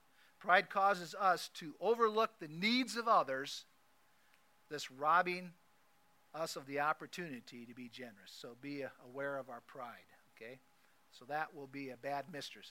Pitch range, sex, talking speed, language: 140-190 Hz, male, 150 wpm, English